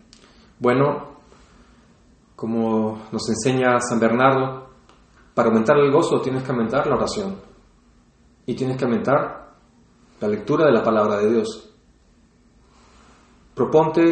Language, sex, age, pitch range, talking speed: English, male, 30-49, 115-135 Hz, 115 wpm